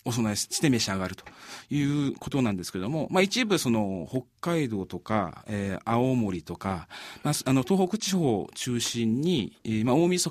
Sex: male